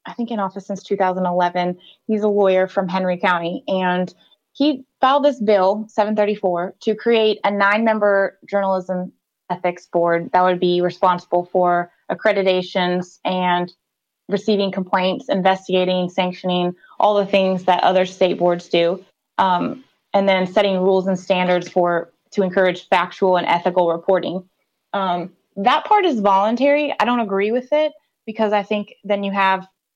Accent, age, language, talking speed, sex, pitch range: American, 20-39, English, 150 wpm, female, 180-210 Hz